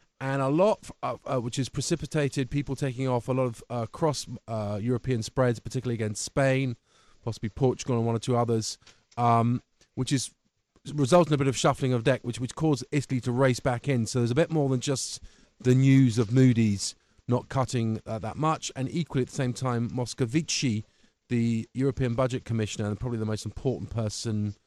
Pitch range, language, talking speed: 105-130 Hz, English, 195 wpm